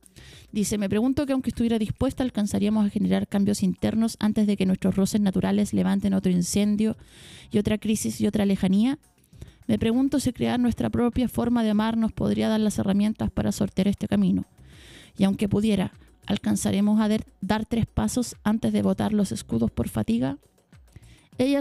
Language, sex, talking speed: Spanish, female, 165 wpm